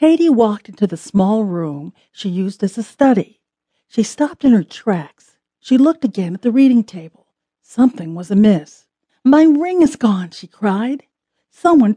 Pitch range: 185-260 Hz